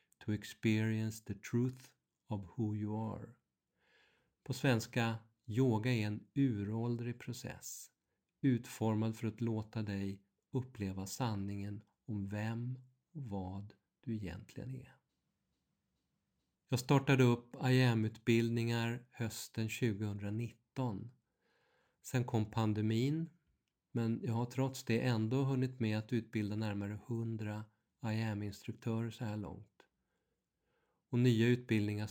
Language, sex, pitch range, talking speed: Swedish, male, 105-120 Hz, 105 wpm